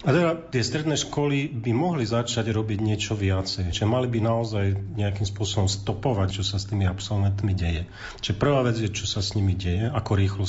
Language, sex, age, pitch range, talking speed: Slovak, male, 40-59, 95-125 Hz, 200 wpm